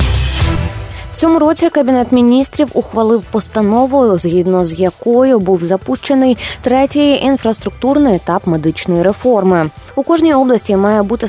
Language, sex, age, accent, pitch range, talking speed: Ukrainian, female, 20-39, native, 180-245 Hz, 115 wpm